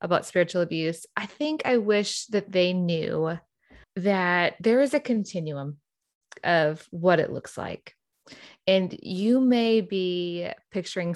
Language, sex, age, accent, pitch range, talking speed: English, female, 20-39, American, 170-210 Hz, 135 wpm